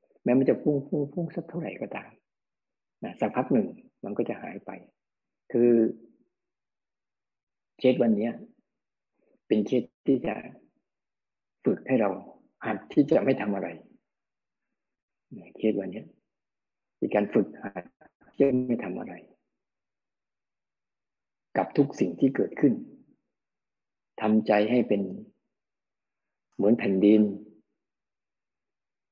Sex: male